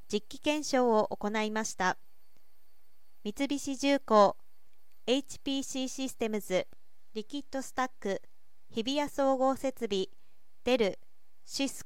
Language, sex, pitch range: Japanese, female, 215-275 Hz